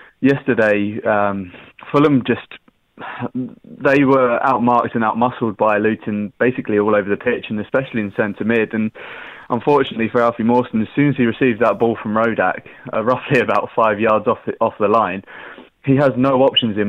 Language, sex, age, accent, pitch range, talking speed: English, male, 20-39, British, 105-125 Hz, 175 wpm